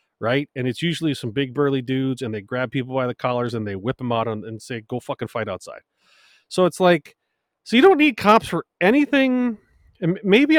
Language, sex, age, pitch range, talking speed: English, male, 30-49, 110-150 Hz, 215 wpm